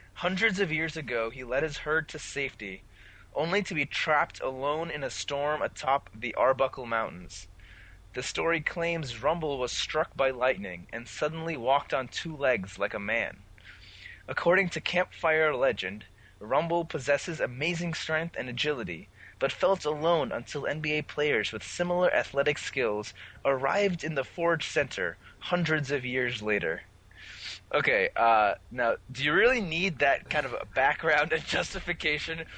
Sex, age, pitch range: male, 20-39, 125-165 Hz